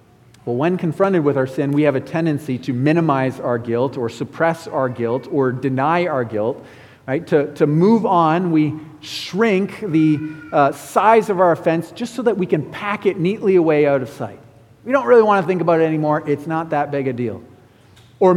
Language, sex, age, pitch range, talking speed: English, male, 40-59, 130-200 Hz, 205 wpm